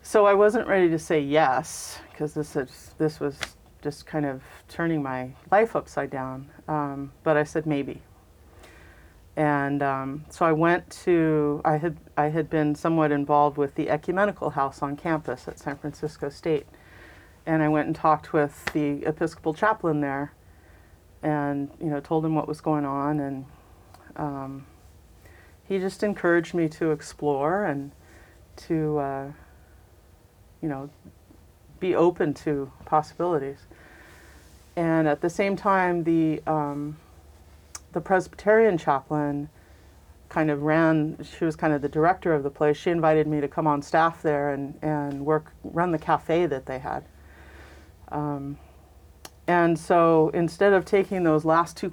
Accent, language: American, English